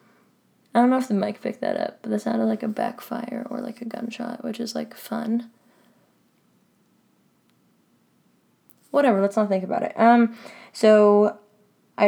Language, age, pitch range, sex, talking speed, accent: English, 10-29, 190-225 Hz, female, 160 wpm, American